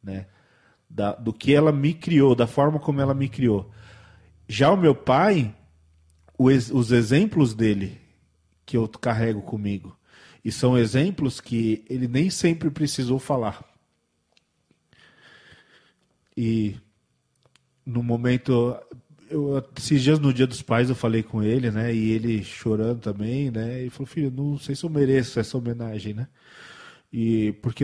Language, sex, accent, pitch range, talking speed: Portuguese, male, Brazilian, 115-145 Hz, 140 wpm